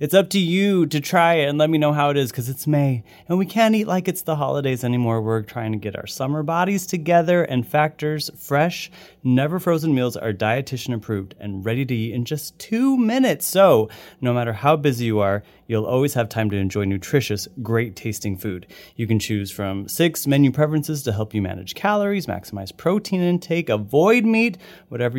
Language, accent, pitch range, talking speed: English, American, 110-165 Hz, 200 wpm